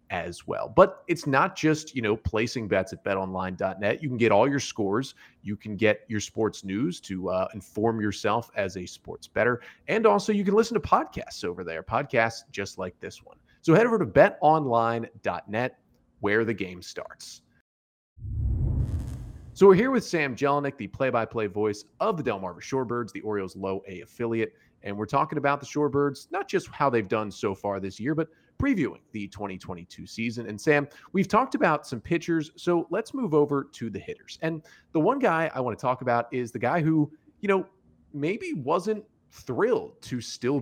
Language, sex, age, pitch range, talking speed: English, male, 30-49, 105-155 Hz, 190 wpm